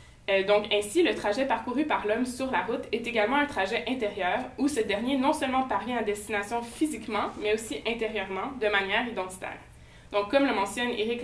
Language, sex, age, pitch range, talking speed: French, female, 20-39, 200-260 Hz, 190 wpm